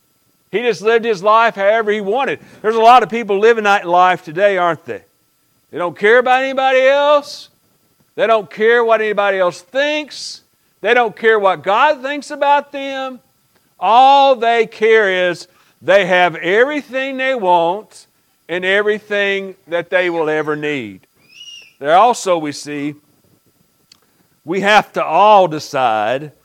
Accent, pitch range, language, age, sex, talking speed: American, 175-230 Hz, English, 50-69, male, 145 wpm